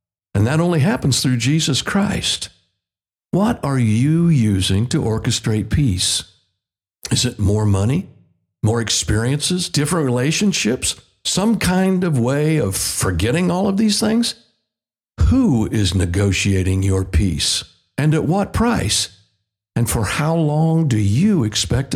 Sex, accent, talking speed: male, American, 130 wpm